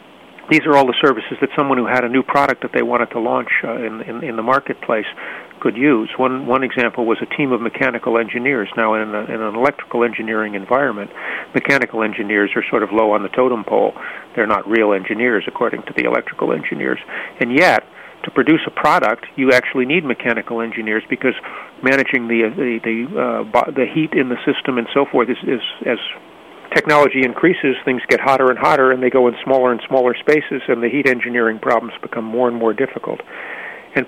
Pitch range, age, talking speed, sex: 115-130 Hz, 50-69, 210 wpm, male